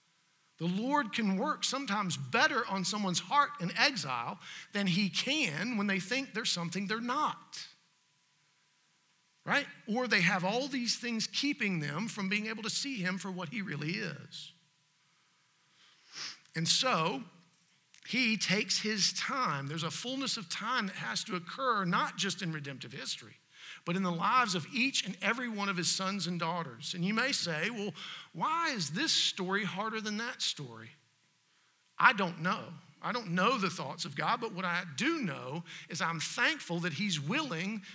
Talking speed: 170 wpm